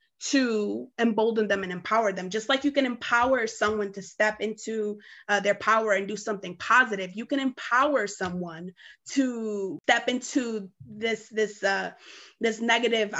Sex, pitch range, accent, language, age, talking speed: female, 200-230 Hz, American, English, 20-39, 155 wpm